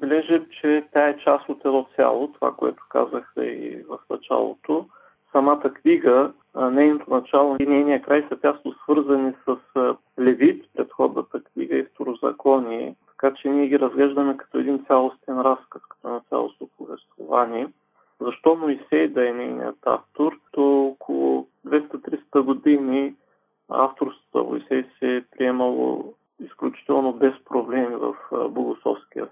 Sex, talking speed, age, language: male, 125 wpm, 40-59, Bulgarian